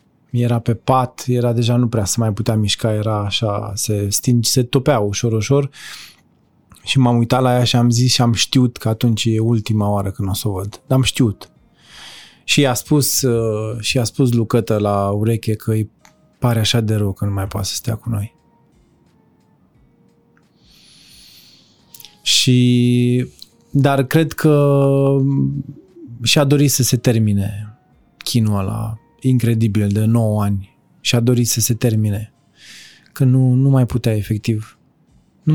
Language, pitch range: Romanian, 110-125 Hz